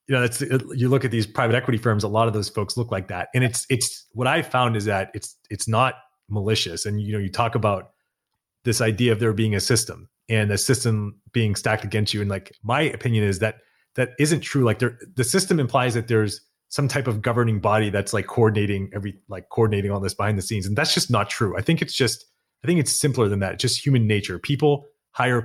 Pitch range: 105-125 Hz